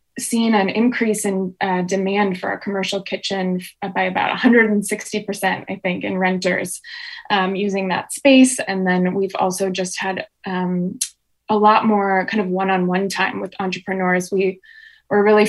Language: English